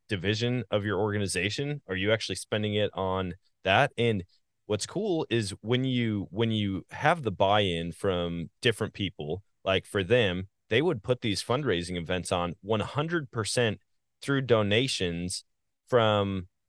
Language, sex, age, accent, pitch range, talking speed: English, male, 30-49, American, 85-110 Hz, 150 wpm